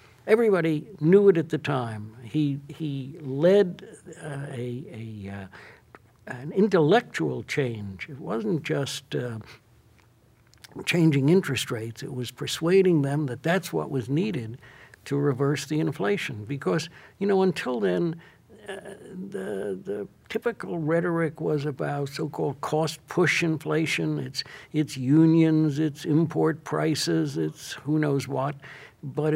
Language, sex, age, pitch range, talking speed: English, male, 60-79, 130-160 Hz, 125 wpm